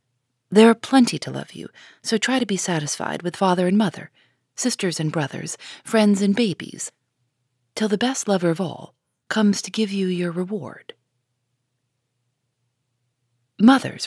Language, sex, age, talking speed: English, female, 40-59, 145 wpm